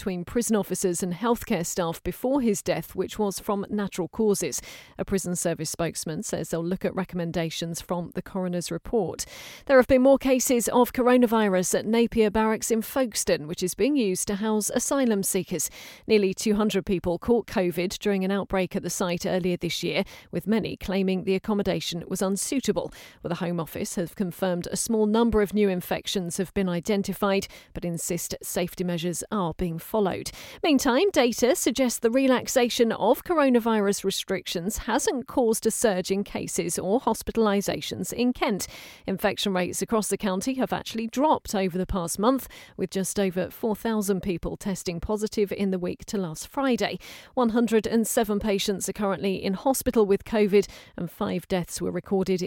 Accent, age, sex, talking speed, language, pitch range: British, 40-59, female, 165 wpm, English, 180-225 Hz